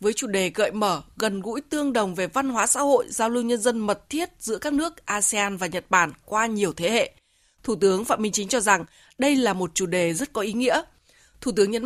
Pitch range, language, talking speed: 205-280 Hz, Vietnamese, 255 wpm